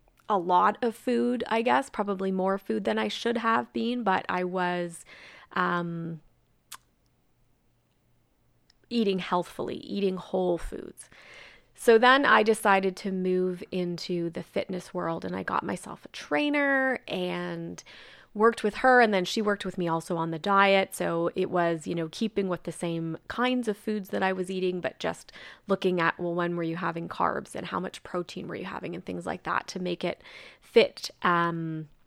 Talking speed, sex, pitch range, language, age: 180 wpm, female, 170-210 Hz, English, 20-39